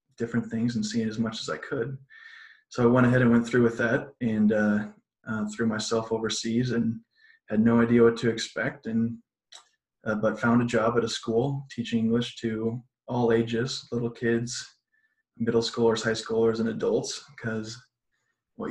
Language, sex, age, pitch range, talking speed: English, male, 20-39, 115-125 Hz, 175 wpm